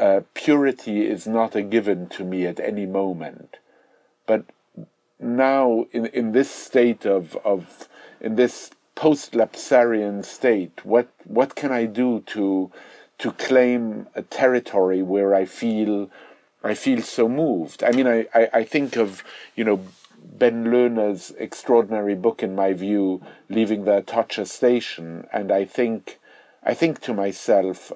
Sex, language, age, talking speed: male, English, 50-69, 145 wpm